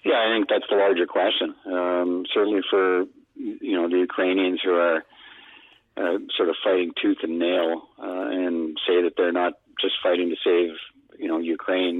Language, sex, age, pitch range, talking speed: English, male, 50-69, 85-95 Hz, 180 wpm